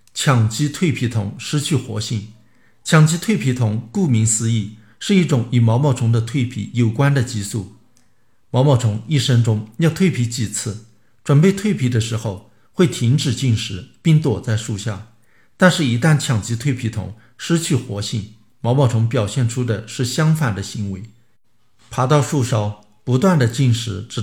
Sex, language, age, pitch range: male, Chinese, 50-69, 110-135 Hz